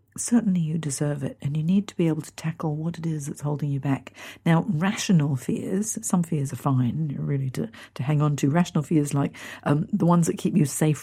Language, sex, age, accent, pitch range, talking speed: English, female, 50-69, British, 145-180 Hz, 230 wpm